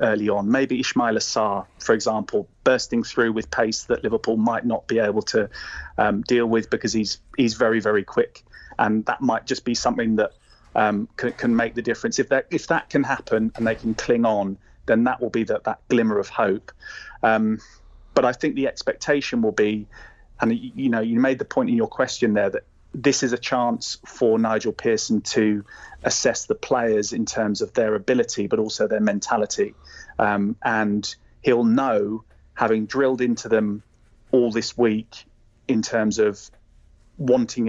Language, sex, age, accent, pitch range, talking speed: English, male, 30-49, British, 110-125 Hz, 185 wpm